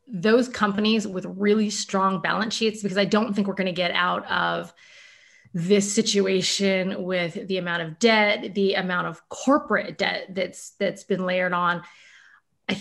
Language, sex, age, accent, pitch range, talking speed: English, female, 20-39, American, 170-215 Hz, 165 wpm